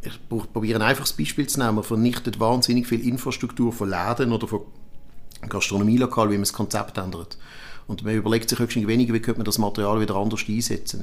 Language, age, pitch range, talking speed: German, 50-69, 105-120 Hz, 195 wpm